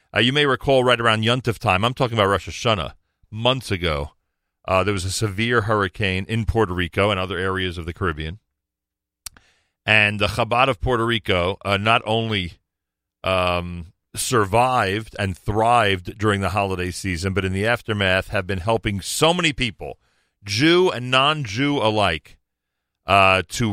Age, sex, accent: 40-59, male, American